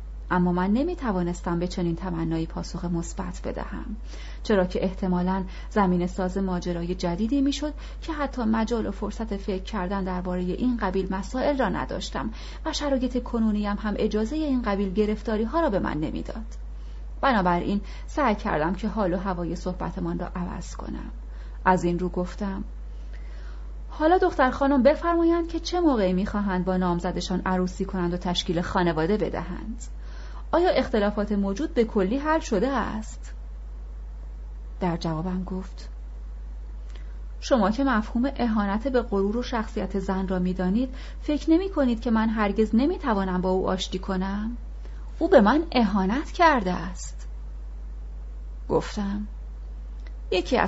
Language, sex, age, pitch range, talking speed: Persian, female, 30-49, 175-225 Hz, 135 wpm